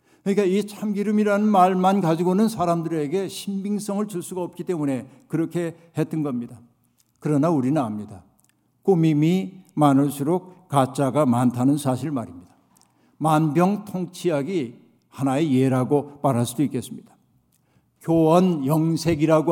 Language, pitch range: Korean, 140-175 Hz